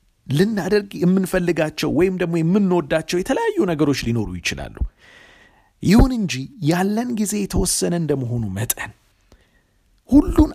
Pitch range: 130-190 Hz